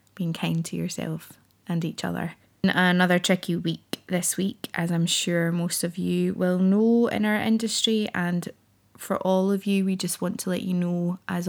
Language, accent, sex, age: English, British, female, 20-39